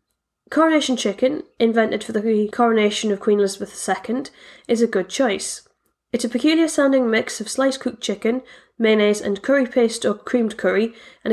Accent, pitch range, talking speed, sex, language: British, 205-260 Hz, 160 wpm, female, English